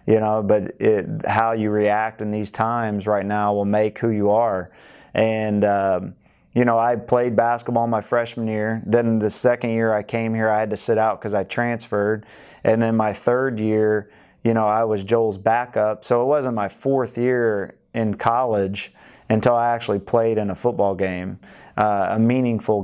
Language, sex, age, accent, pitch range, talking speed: English, male, 20-39, American, 105-115 Hz, 190 wpm